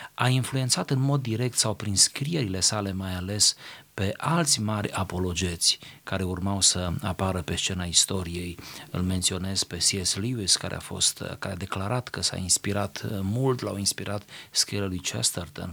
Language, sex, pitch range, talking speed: Romanian, male, 95-135 Hz, 160 wpm